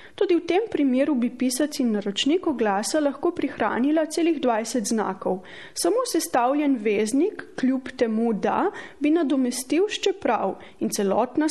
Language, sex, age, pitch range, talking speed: Italian, female, 30-49, 220-320 Hz, 130 wpm